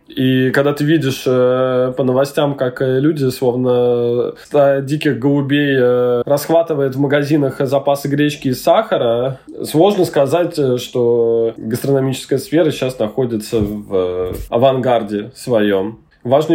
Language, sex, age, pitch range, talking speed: Russian, male, 20-39, 125-155 Hz, 105 wpm